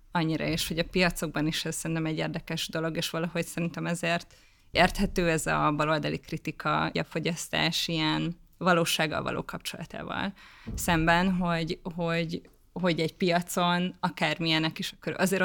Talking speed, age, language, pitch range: 140 wpm, 20-39, Hungarian, 165-180 Hz